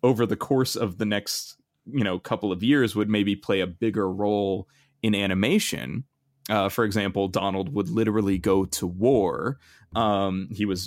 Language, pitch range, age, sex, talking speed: English, 95-120 Hz, 20-39, male, 170 wpm